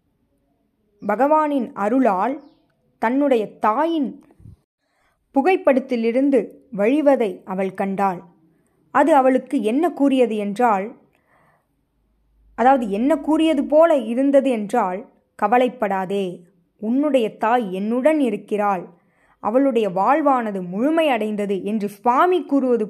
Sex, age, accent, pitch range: female, 20-39, native, 195-260 Hz